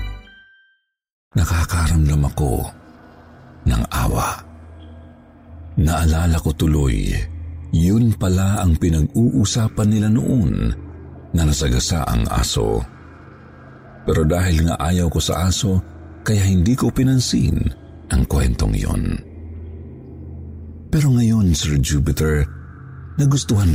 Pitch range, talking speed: 80-105 Hz, 90 wpm